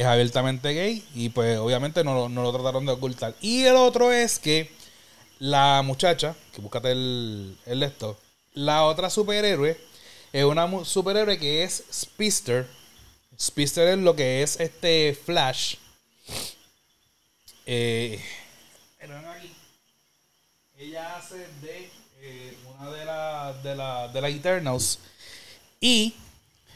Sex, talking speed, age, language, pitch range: male, 120 wpm, 30-49, Spanish, 125-170 Hz